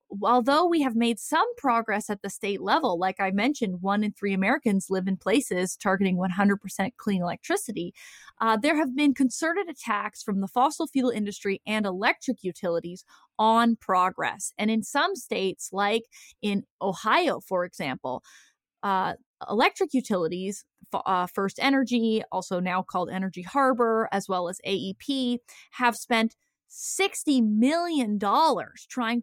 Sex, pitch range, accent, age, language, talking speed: female, 205-285 Hz, American, 20-39, English, 145 wpm